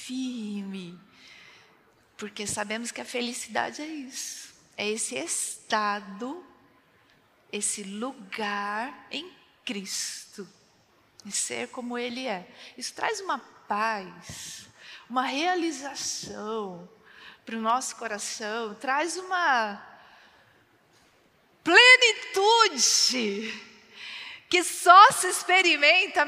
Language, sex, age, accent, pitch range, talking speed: Portuguese, female, 40-59, Brazilian, 215-280 Hz, 80 wpm